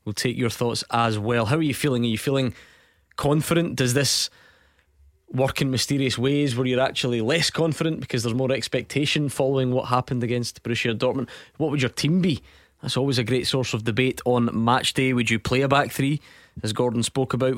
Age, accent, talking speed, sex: 20-39, British, 205 wpm, male